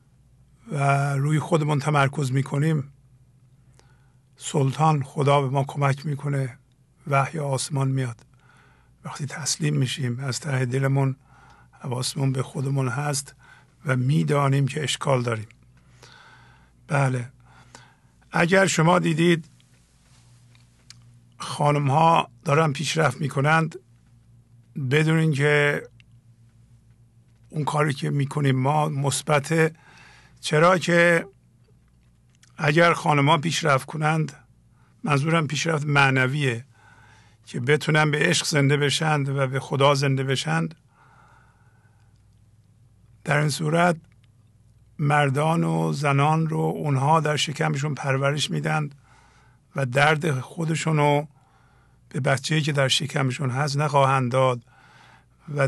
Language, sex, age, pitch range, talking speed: English, male, 50-69, 130-150 Hz, 100 wpm